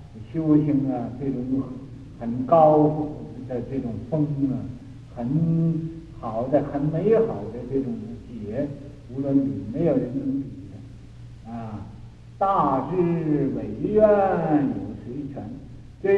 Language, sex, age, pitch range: Chinese, male, 60-79, 120-145 Hz